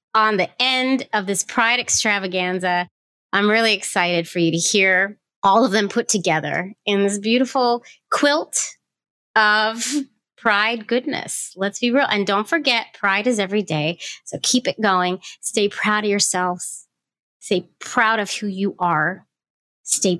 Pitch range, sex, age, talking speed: 175-220 Hz, female, 30-49, 150 wpm